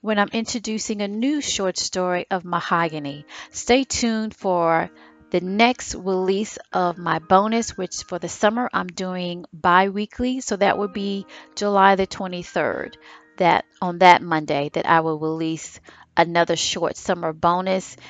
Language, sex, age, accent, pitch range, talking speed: English, female, 30-49, American, 170-205 Hz, 145 wpm